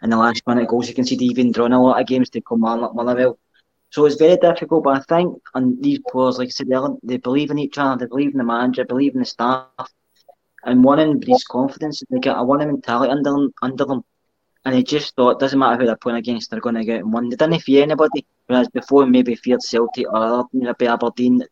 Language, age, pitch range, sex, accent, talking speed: English, 20-39, 120-140 Hz, male, British, 270 wpm